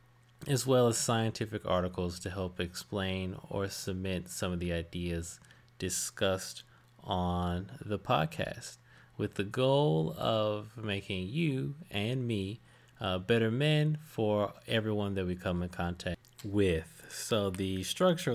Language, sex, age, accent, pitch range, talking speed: English, male, 20-39, American, 90-115 Hz, 130 wpm